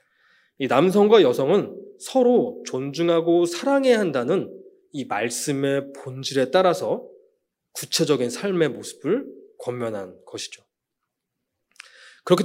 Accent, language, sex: native, Korean, male